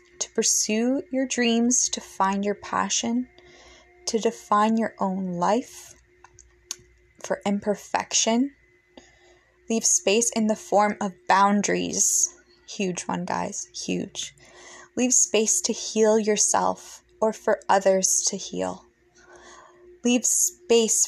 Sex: female